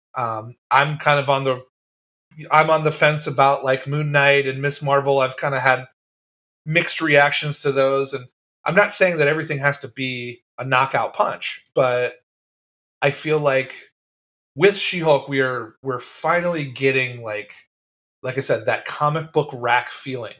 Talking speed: 170 wpm